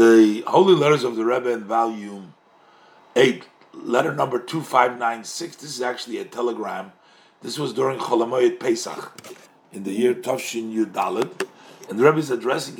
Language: English